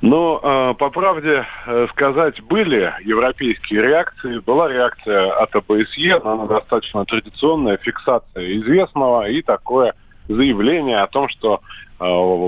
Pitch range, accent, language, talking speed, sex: 100-130 Hz, native, Russian, 120 wpm, male